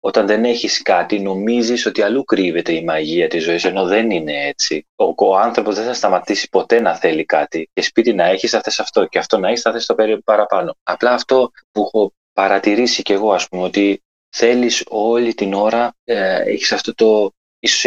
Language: Greek